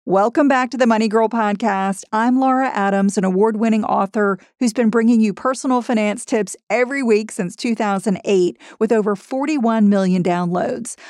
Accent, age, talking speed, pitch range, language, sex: American, 40-59, 155 wpm, 200-255 Hz, English, female